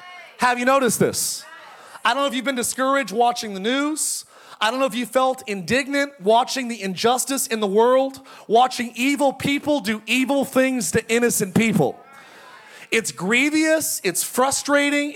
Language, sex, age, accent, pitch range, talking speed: English, male, 30-49, American, 235-305 Hz, 160 wpm